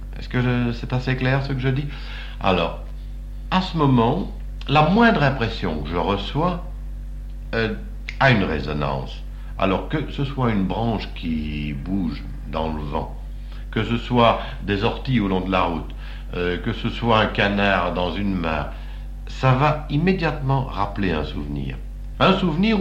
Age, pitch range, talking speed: 60-79, 80-125 Hz, 165 wpm